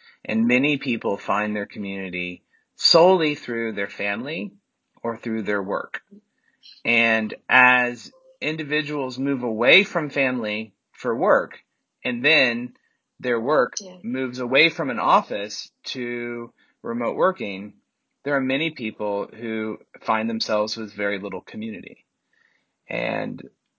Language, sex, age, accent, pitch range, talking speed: English, male, 30-49, American, 105-140 Hz, 120 wpm